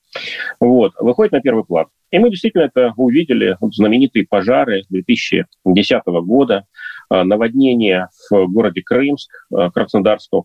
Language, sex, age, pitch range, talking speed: Russian, male, 30-49, 100-130 Hz, 110 wpm